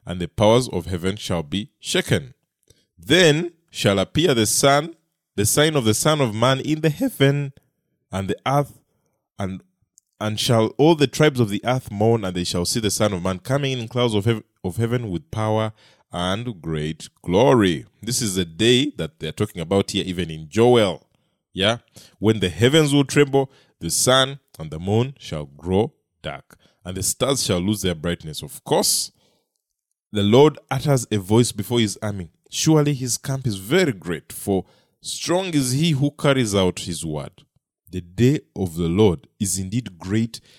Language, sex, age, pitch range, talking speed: English, male, 20-39, 100-140 Hz, 180 wpm